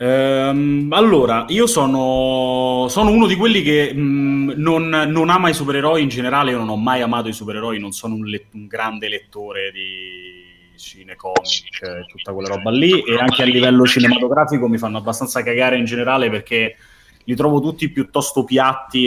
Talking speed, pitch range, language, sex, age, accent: 175 wpm, 105-135 Hz, Italian, male, 20-39, native